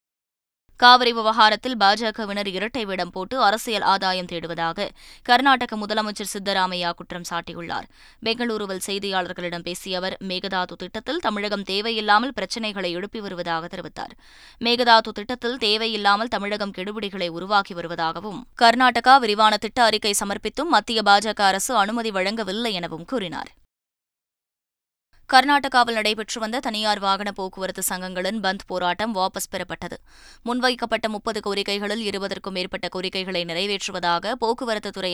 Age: 20-39